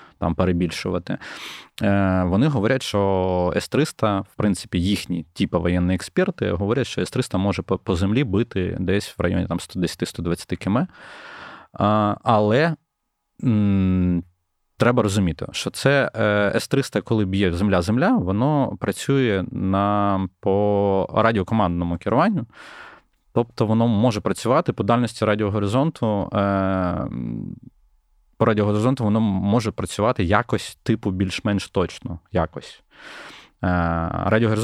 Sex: male